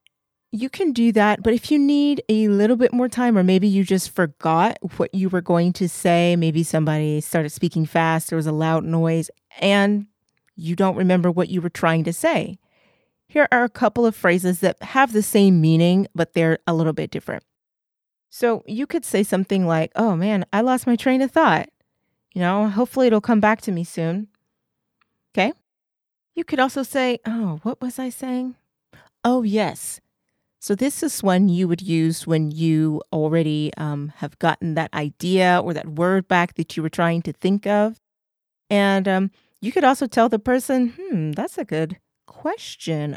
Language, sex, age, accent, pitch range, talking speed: English, female, 30-49, American, 165-230 Hz, 190 wpm